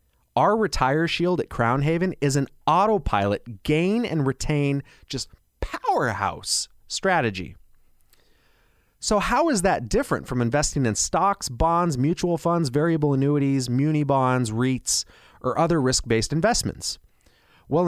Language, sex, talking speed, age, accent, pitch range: English, male, 130 wpm, 30-49, American, 105-150 Hz